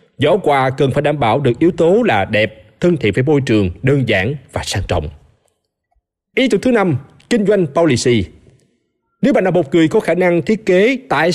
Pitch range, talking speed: 120-180 Hz, 205 wpm